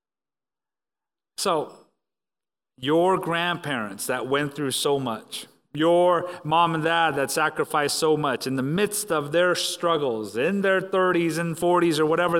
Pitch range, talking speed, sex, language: 145-180 Hz, 140 wpm, male, English